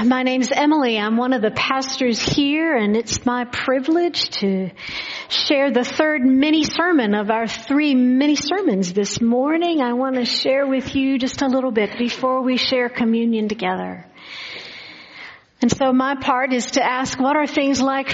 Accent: American